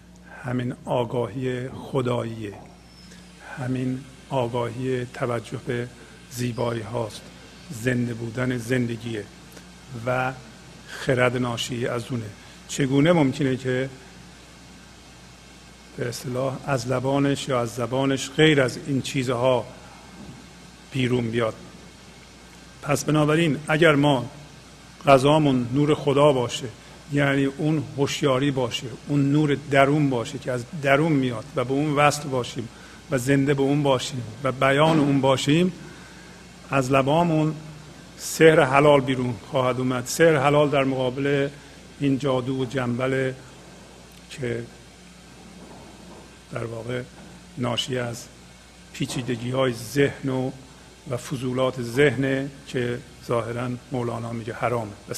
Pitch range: 120-140 Hz